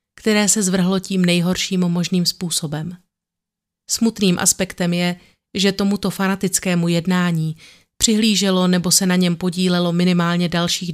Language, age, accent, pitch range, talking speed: Czech, 30-49, native, 175-195 Hz, 120 wpm